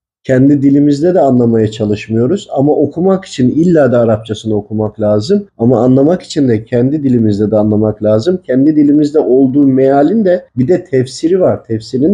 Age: 50-69